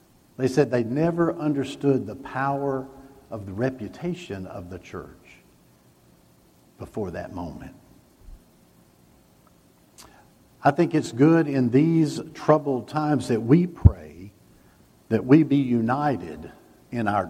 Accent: American